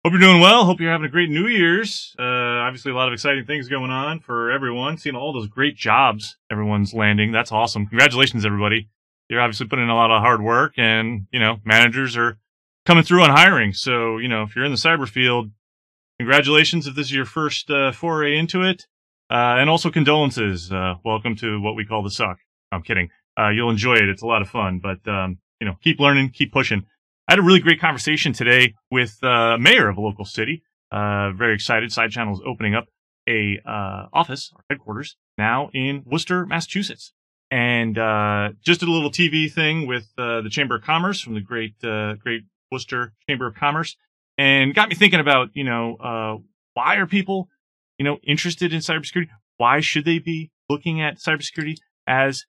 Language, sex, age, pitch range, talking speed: English, male, 30-49, 110-155 Hz, 200 wpm